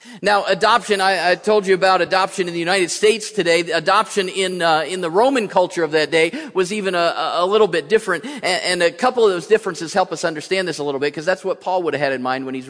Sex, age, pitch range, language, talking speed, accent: male, 40-59, 145-190 Hz, English, 275 wpm, American